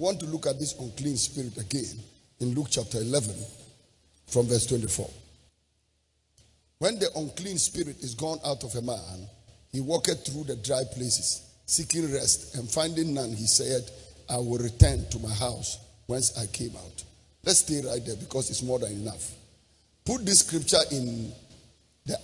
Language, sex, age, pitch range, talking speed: English, male, 50-69, 115-150 Hz, 165 wpm